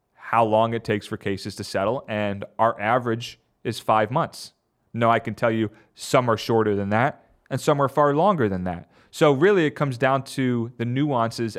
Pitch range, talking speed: 105-130 Hz, 200 wpm